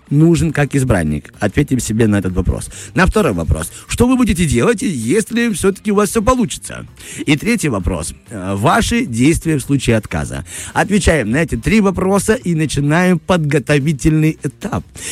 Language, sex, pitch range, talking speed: Russian, male, 110-175 Hz, 150 wpm